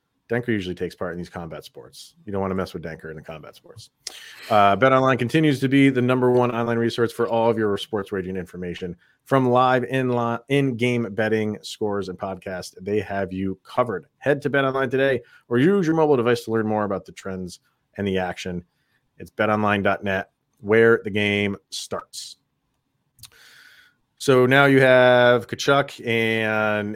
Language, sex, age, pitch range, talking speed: English, male, 30-49, 100-125 Hz, 170 wpm